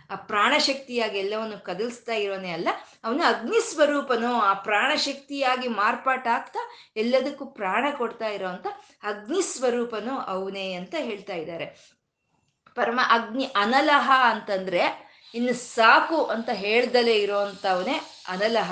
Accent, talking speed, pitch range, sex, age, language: native, 105 wpm, 210-290 Hz, female, 20-39, Kannada